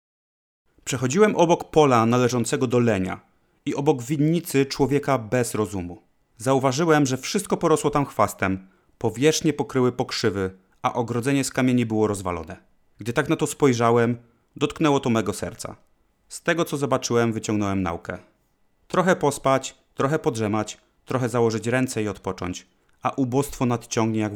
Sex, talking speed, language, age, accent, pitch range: male, 135 wpm, Polish, 30-49, native, 110-145 Hz